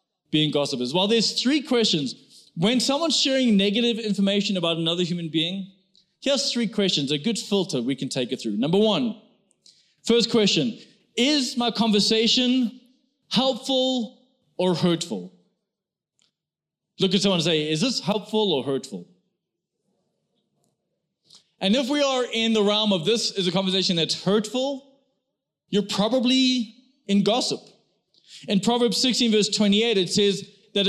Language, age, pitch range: English, 20-39, 180-235 Hz